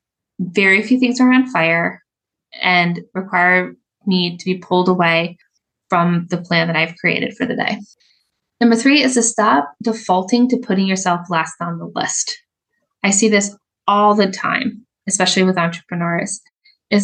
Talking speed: 160 wpm